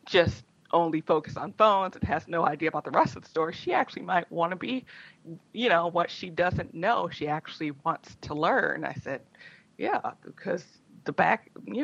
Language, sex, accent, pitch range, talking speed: English, female, American, 155-185 Hz, 200 wpm